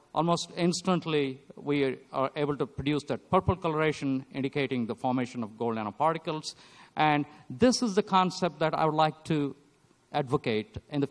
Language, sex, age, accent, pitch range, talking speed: English, male, 50-69, Indian, 135-185 Hz, 155 wpm